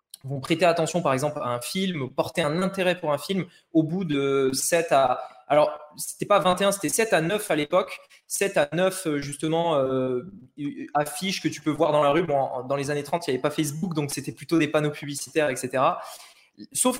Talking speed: 210 wpm